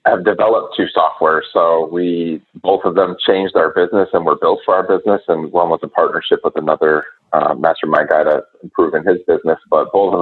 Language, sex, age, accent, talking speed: English, male, 30-49, American, 210 wpm